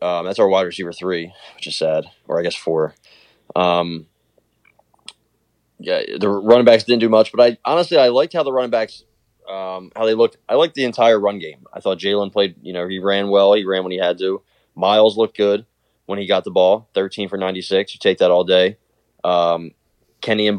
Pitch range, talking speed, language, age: 90-110 Hz, 220 wpm, English, 20-39